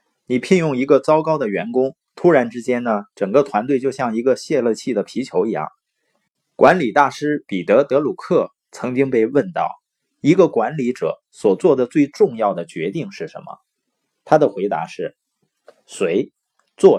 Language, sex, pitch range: Chinese, male, 125-185 Hz